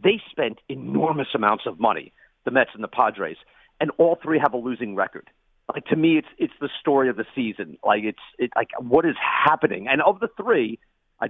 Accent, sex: American, male